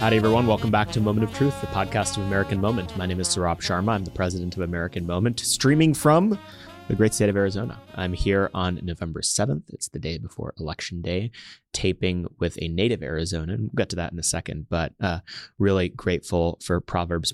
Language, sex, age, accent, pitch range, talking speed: English, male, 30-49, American, 85-105 Hz, 210 wpm